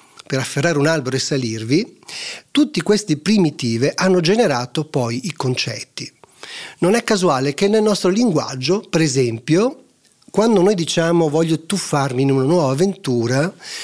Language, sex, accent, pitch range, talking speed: Italian, male, native, 140-195 Hz, 140 wpm